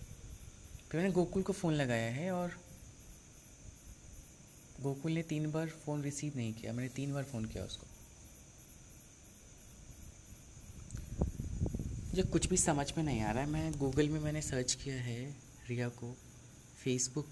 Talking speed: 140 wpm